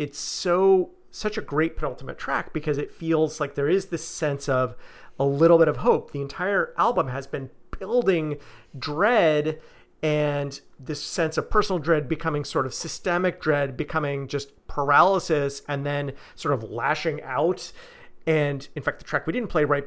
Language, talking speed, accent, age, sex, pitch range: English, 170 wpm, American, 40-59, male, 135-160 Hz